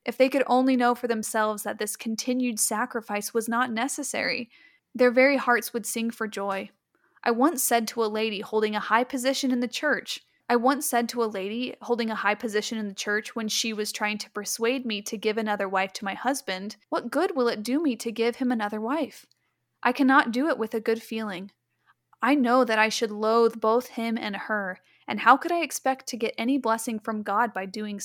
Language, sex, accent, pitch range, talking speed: English, female, American, 215-255 Hz, 220 wpm